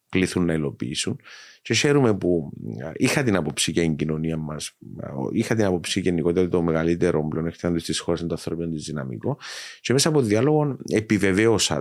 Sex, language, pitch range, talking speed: male, Greek, 80-105 Hz, 190 wpm